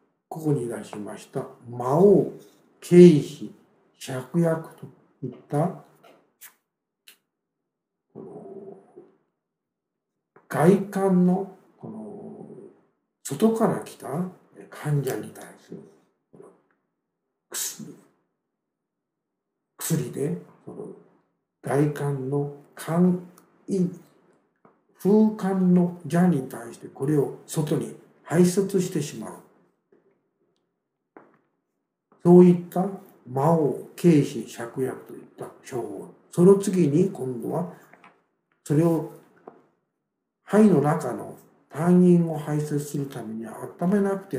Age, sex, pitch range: 60-79, male, 140-190 Hz